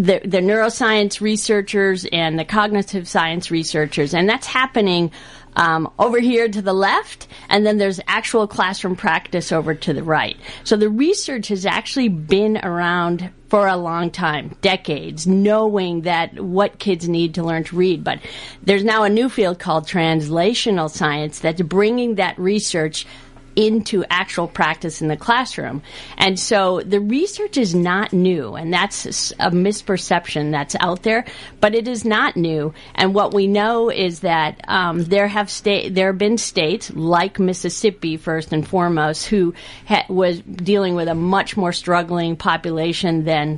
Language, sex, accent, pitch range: English, female, American, 165-205 Hz